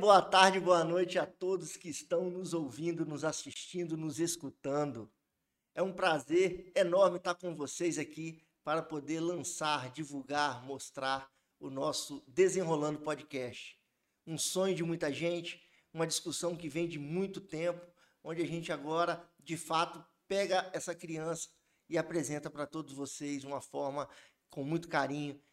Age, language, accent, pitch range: 50-69, Portuguese, Brazilian, 150-180 Hz